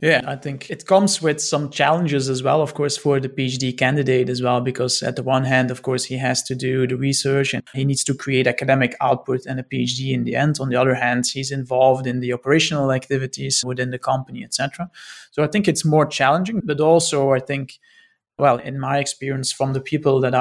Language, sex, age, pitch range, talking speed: English, male, 30-49, 125-145 Hz, 225 wpm